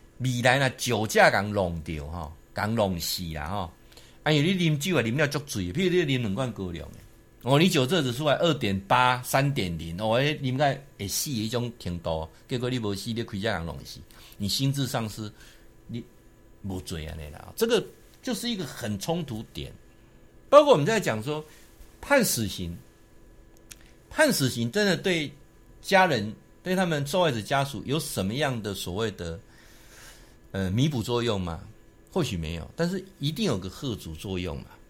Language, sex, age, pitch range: Chinese, male, 60-79, 95-150 Hz